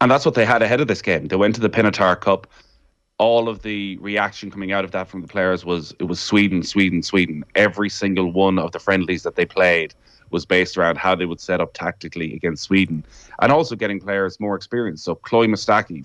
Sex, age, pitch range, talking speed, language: male, 30-49, 95-110 Hz, 230 wpm, English